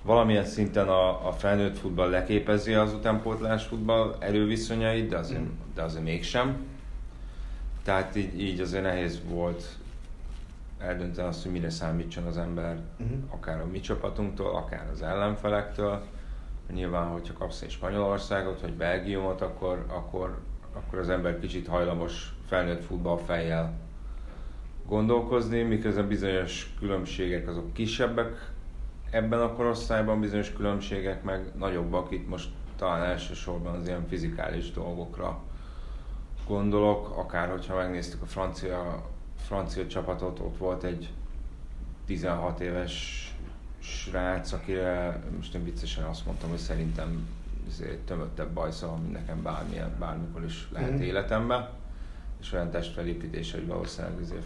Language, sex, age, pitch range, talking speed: Hungarian, male, 30-49, 85-100 Hz, 120 wpm